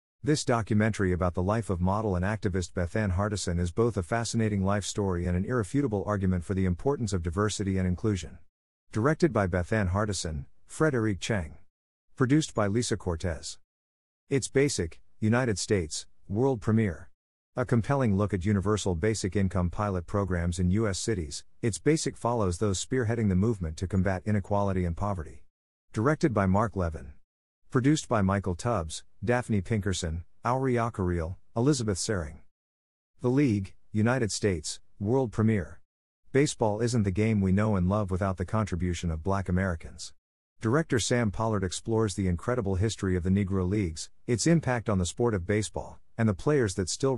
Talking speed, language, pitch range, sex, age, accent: 160 wpm, English, 90-115 Hz, male, 50-69, American